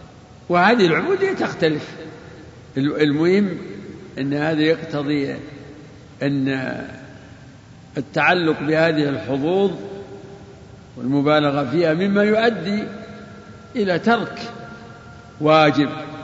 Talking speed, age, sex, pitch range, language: 65 wpm, 60-79, male, 135-165 Hz, Arabic